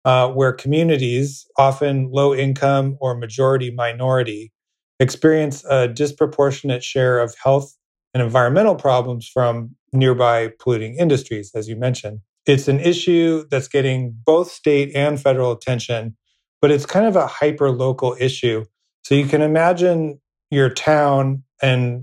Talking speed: 130 wpm